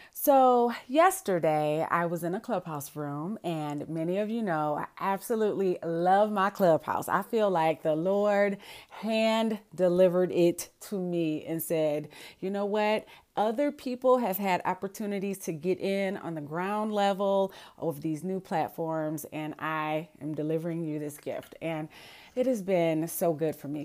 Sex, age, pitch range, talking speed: female, 30-49, 155-205 Hz, 160 wpm